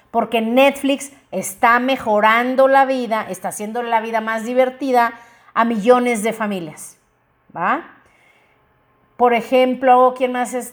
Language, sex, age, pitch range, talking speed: Spanish, female, 40-59, 205-250 Hz, 125 wpm